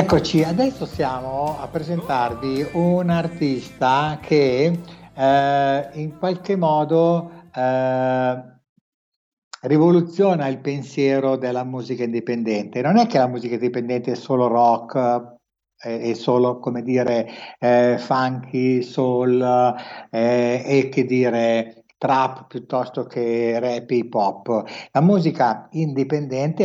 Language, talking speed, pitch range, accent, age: Italian, 110 wpm, 125-165 Hz, native, 60-79